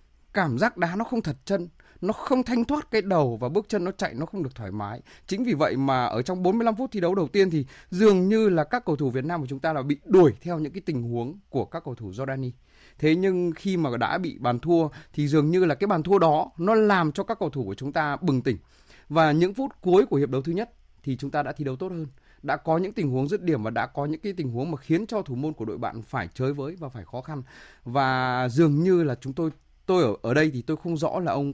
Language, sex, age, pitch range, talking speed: Vietnamese, male, 20-39, 130-185 Hz, 280 wpm